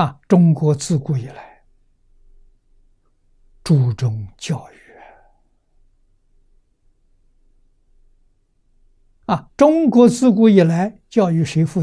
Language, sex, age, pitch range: Chinese, male, 60-79, 100-155 Hz